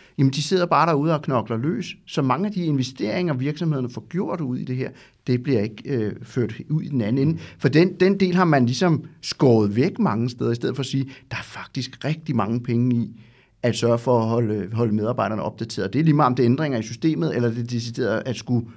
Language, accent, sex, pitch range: Danish, native, male, 120-155 Hz